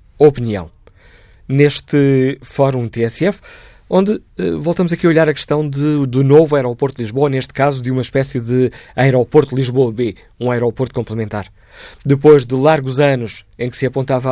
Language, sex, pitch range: Portuguese, male, 120-150 Hz